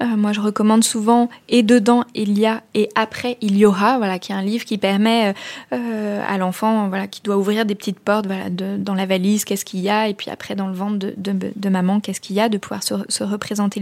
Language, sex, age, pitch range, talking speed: French, female, 20-39, 195-220 Hz, 235 wpm